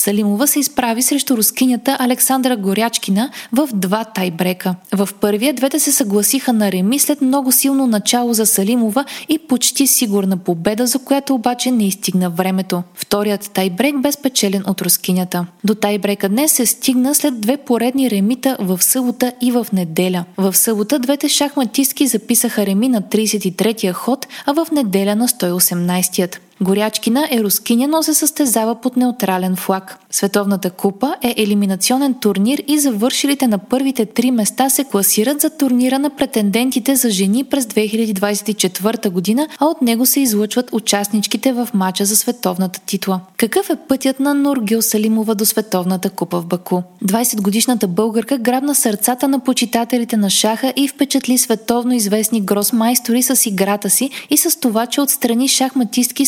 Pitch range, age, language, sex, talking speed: 200-265 Hz, 20-39, Bulgarian, female, 150 wpm